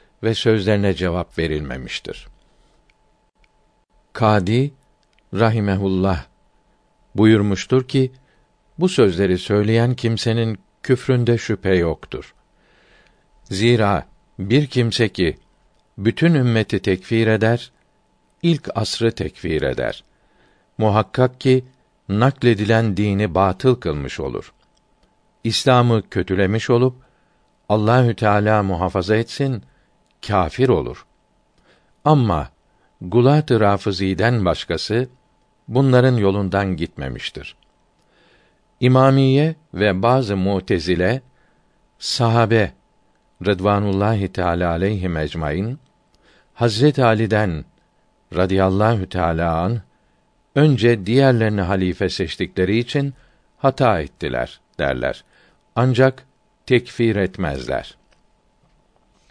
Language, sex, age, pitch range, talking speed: Turkish, male, 60-79, 95-125 Hz, 75 wpm